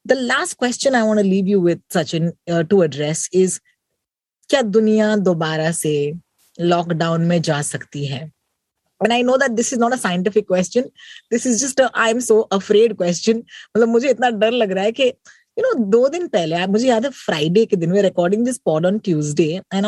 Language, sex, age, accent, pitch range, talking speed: Hindi, female, 30-49, native, 185-255 Hz, 205 wpm